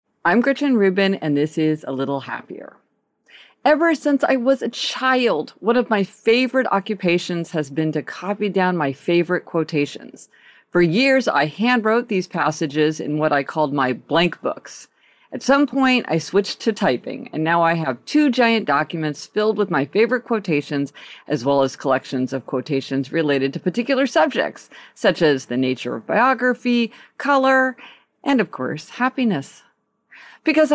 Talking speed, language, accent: 160 wpm, English, American